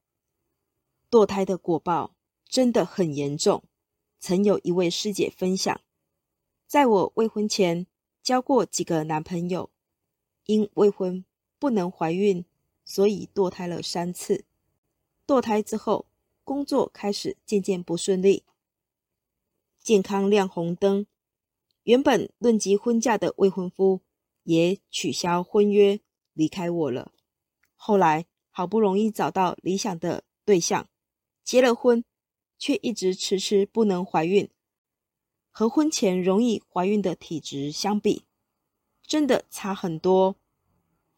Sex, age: female, 20-39